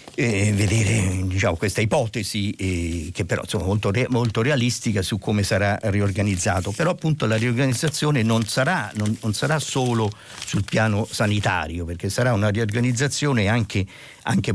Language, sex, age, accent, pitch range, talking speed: Italian, male, 50-69, native, 95-115 Hz, 130 wpm